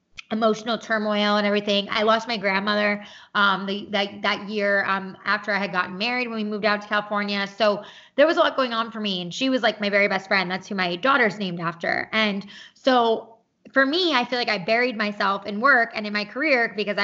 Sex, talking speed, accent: female, 230 wpm, American